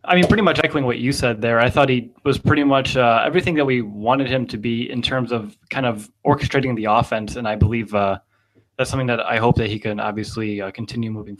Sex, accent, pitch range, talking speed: male, American, 115-145 Hz, 250 wpm